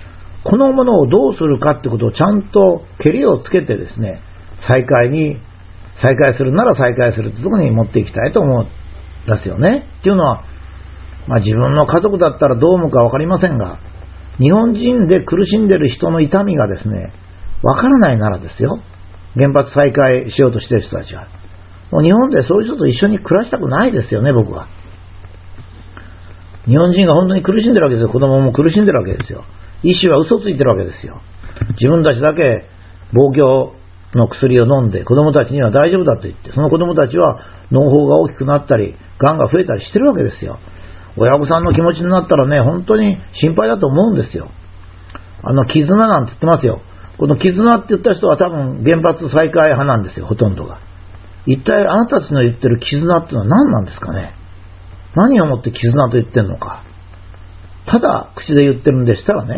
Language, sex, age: Japanese, male, 50-69